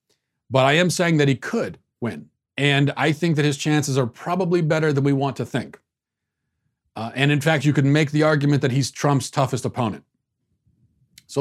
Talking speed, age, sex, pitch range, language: 195 wpm, 40-59, male, 125-155 Hz, English